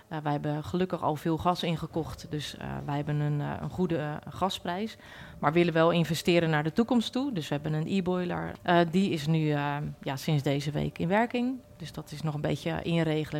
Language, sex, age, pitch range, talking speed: Dutch, female, 30-49, 150-175 Hz, 225 wpm